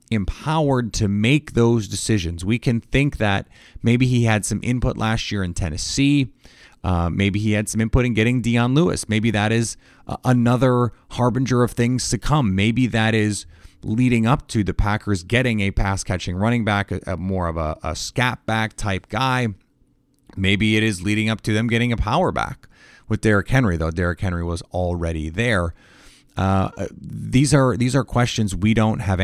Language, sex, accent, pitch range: English, male, American, 95-125 Hz